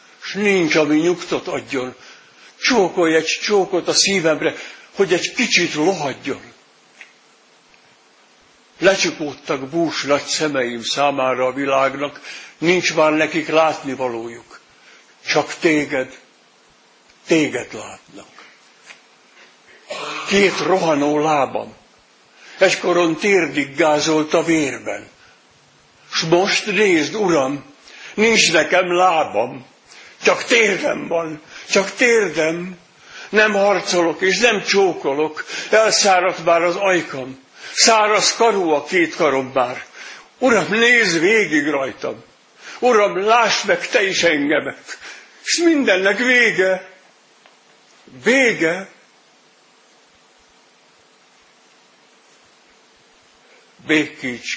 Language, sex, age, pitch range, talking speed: Hungarian, male, 60-79, 150-195 Hz, 85 wpm